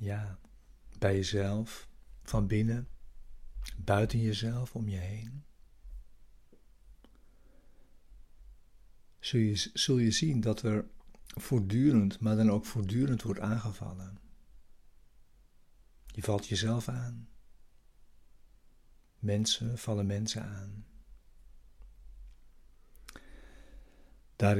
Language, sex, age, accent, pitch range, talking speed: Dutch, male, 60-79, Dutch, 100-115 Hz, 80 wpm